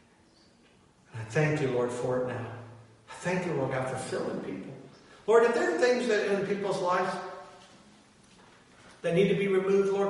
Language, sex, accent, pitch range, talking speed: English, male, American, 125-185 Hz, 160 wpm